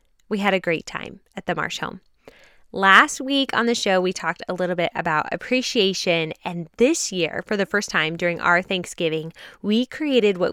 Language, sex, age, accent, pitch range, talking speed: English, female, 10-29, American, 170-225 Hz, 195 wpm